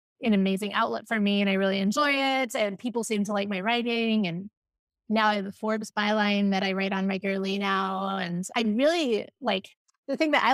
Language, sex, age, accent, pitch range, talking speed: English, female, 20-39, American, 195-225 Hz, 220 wpm